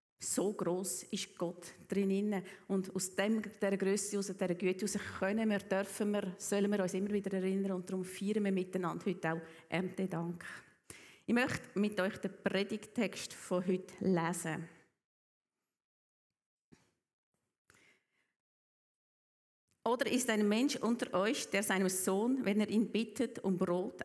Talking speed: 145 wpm